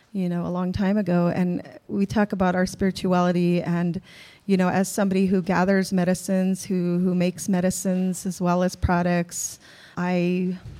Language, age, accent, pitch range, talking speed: English, 30-49, American, 175-190 Hz, 160 wpm